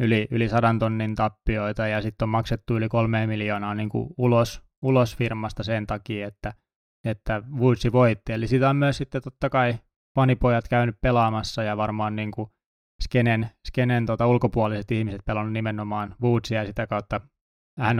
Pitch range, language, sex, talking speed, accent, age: 105-120 Hz, Finnish, male, 155 wpm, native, 20-39